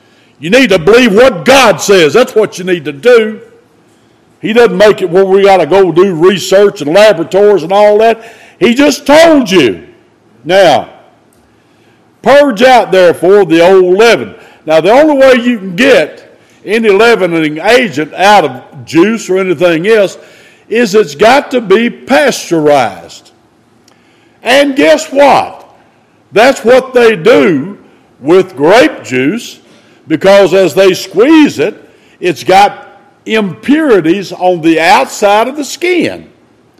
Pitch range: 185-245 Hz